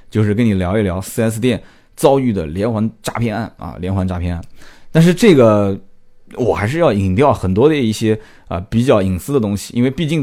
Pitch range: 100-150 Hz